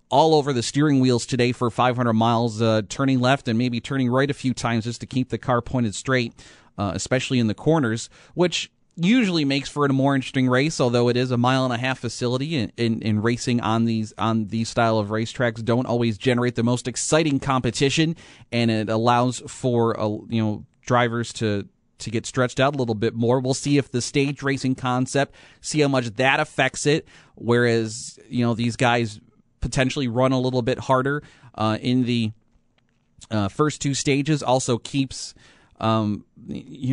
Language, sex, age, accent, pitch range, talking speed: English, male, 30-49, American, 115-135 Hz, 195 wpm